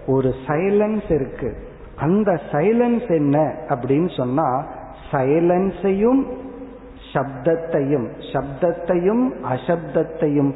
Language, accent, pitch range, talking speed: Tamil, native, 135-190 Hz, 55 wpm